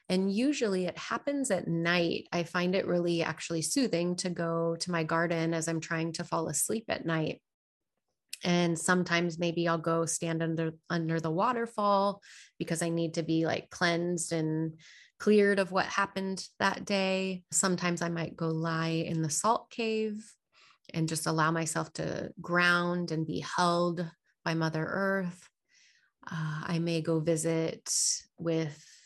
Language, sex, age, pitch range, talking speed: English, female, 30-49, 165-190 Hz, 155 wpm